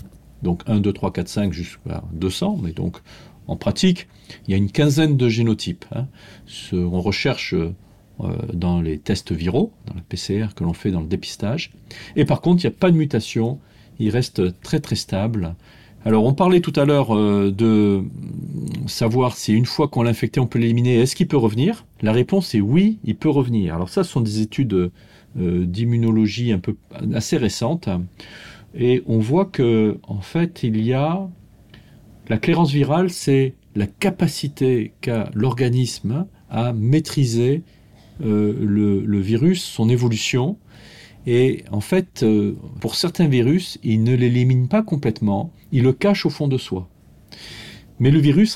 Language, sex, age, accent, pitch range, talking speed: French, male, 40-59, French, 105-145 Hz, 165 wpm